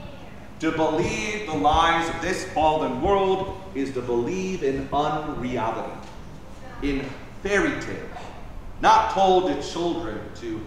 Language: English